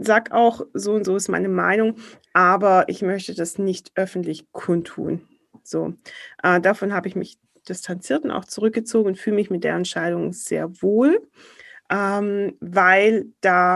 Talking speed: 155 wpm